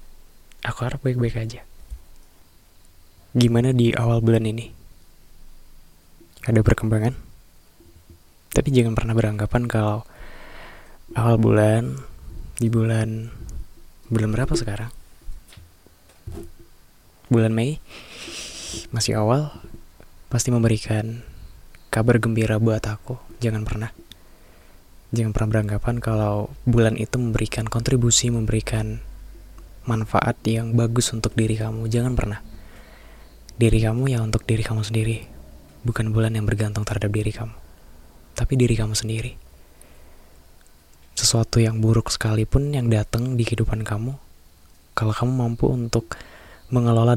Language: Indonesian